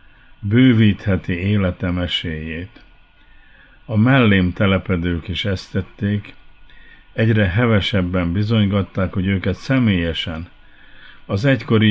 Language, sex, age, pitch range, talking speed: Hungarian, male, 50-69, 90-110 Hz, 80 wpm